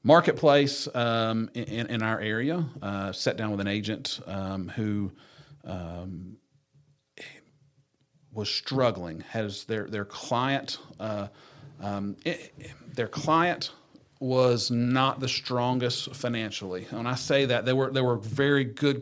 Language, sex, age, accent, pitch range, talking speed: English, male, 40-59, American, 100-130 Hz, 130 wpm